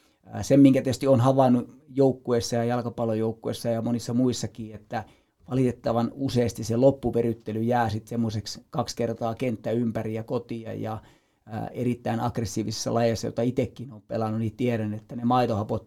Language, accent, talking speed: Finnish, native, 140 wpm